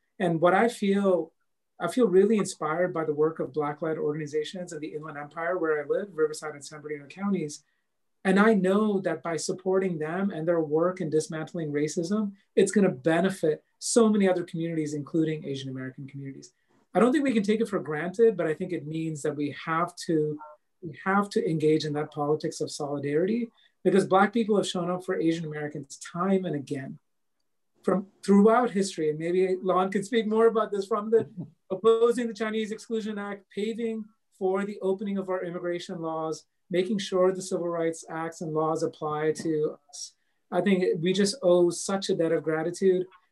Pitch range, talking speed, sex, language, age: 155-195 Hz, 190 wpm, male, English, 40-59